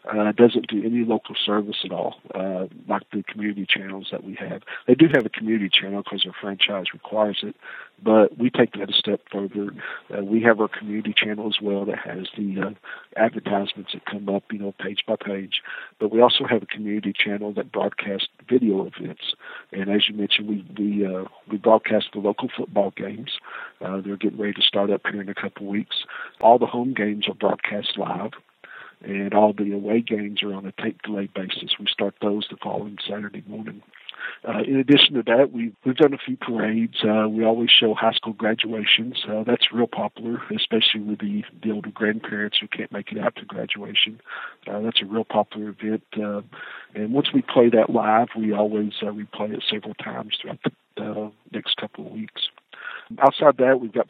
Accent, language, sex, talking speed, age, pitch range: American, English, male, 200 wpm, 50-69, 100-115 Hz